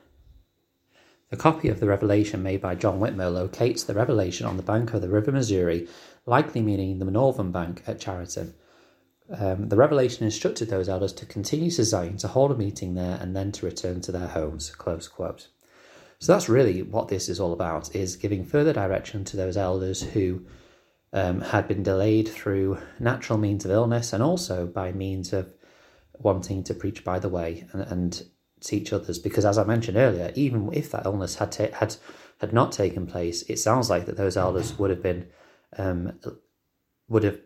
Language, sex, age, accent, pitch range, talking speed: English, male, 30-49, British, 90-110 Hz, 190 wpm